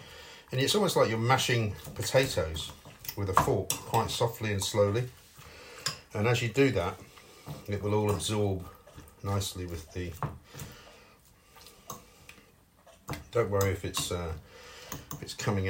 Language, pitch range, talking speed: English, 95-105 Hz, 130 wpm